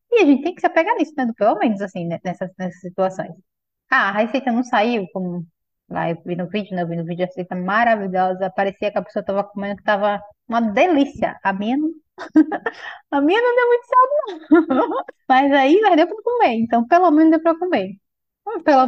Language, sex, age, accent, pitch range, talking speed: Portuguese, female, 20-39, Brazilian, 195-315 Hz, 215 wpm